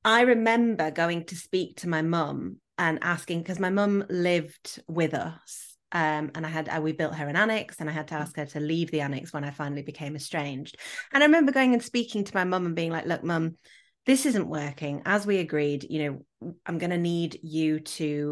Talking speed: 225 wpm